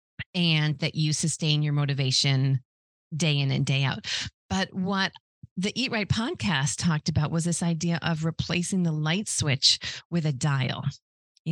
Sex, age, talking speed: female, 30-49, 160 wpm